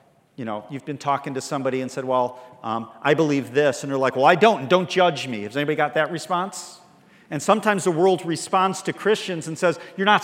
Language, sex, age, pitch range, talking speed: English, male, 40-59, 135-180 Hz, 235 wpm